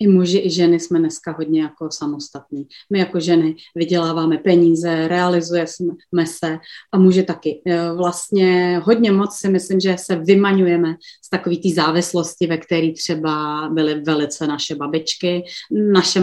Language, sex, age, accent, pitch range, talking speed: Czech, female, 30-49, native, 165-200 Hz, 145 wpm